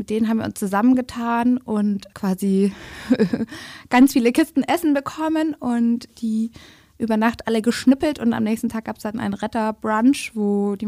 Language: German